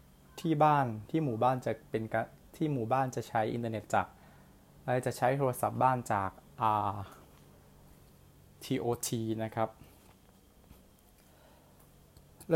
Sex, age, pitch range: male, 20-39, 105-135 Hz